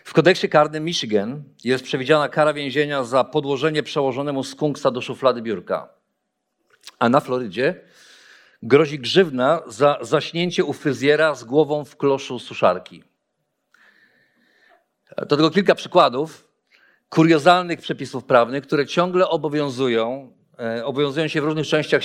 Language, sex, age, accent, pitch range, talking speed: Polish, male, 50-69, native, 140-175 Hz, 120 wpm